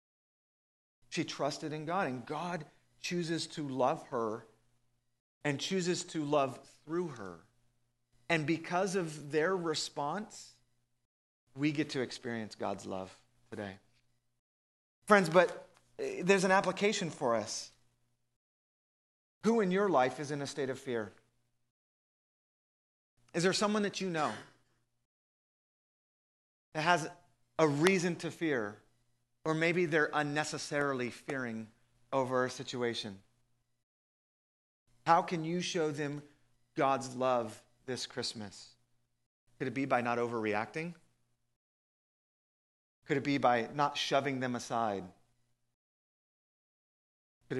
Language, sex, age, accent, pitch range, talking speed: English, male, 40-59, American, 115-150 Hz, 110 wpm